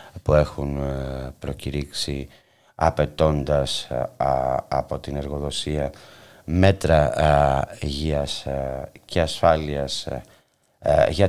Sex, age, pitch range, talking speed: male, 30-49, 75-110 Hz, 65 wpm